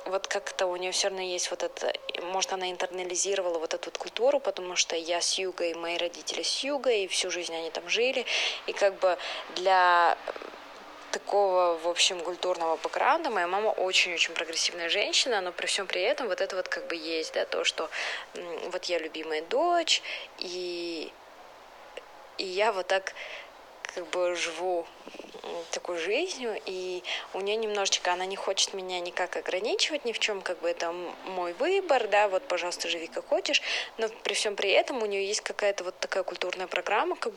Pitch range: 175-210 Hz